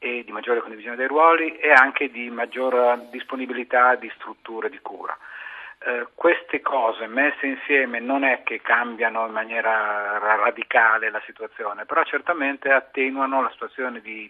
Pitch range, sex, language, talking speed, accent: 120-160 Hz, male, Italian, 145 wpm, native